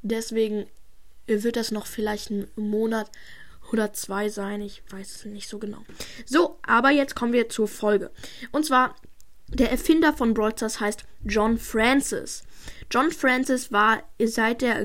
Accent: German